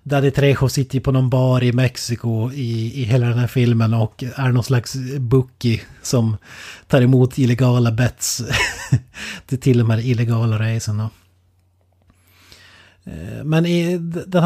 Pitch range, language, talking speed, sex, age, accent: 110-130 Hz, Swedish, 135 wpm, male, 30-49, native